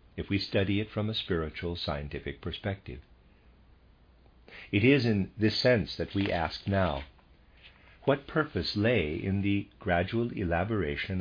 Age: 50-69